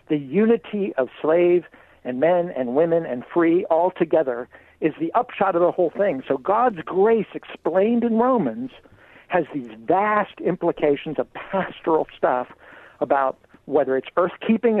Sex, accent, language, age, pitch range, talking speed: male, American, English, 60-79, 135-190 Hz, 145 wpm